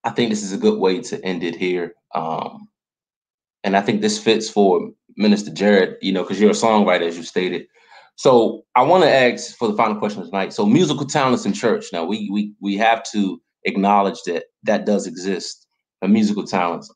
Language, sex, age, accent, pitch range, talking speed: English, male, 20-39, American, 105-150 Hz, 205 wpm